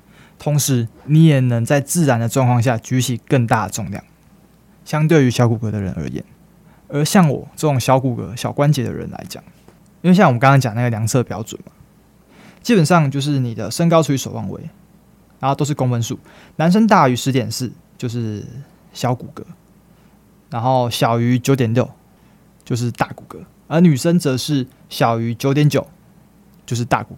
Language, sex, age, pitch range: Chinese, male, 20-39, 120-170 Hz